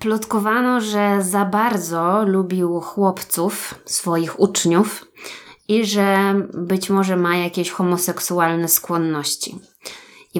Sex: female